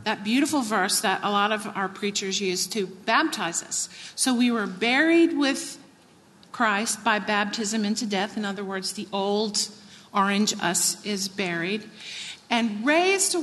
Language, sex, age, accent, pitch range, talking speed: English, female, 50-69, American, 210-280 Hz, 155 wpm